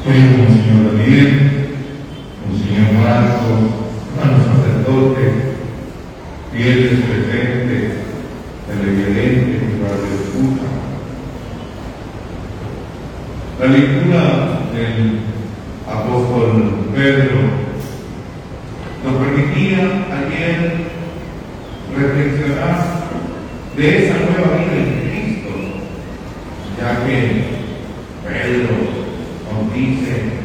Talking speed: 75 wpm